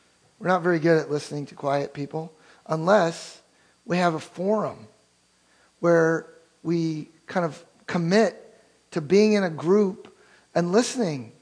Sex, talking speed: male, 135 wpm